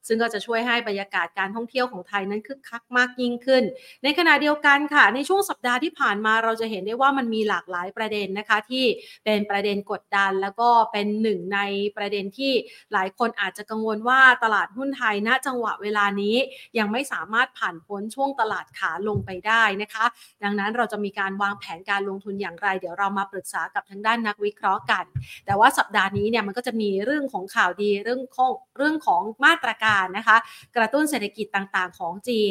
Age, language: 30-49, Thai